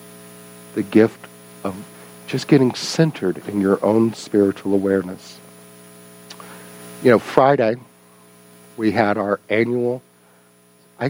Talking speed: 105 wpm